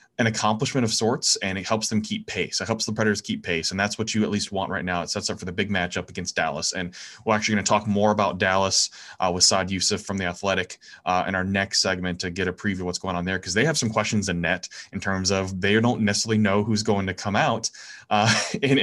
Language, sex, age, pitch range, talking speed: English, male, 20-39, 95-110 Hz, 270 wpm